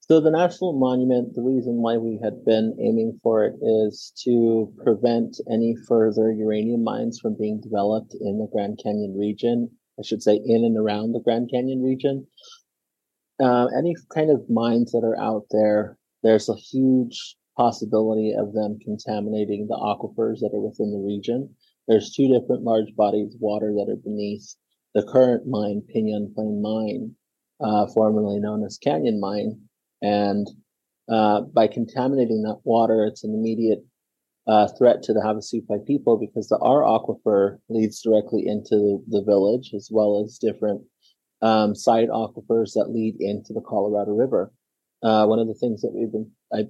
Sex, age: male, 30-49